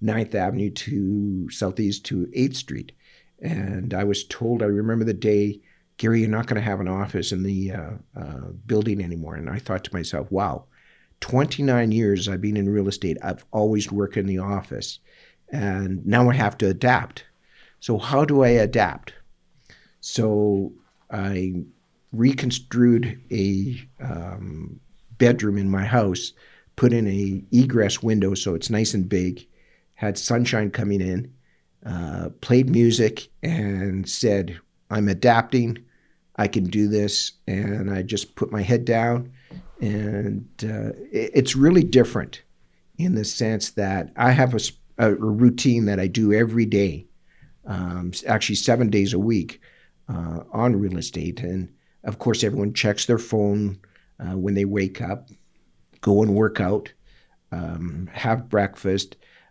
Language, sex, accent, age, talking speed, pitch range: English, male, American, 60-79, 150 wpm, 95-115 Hz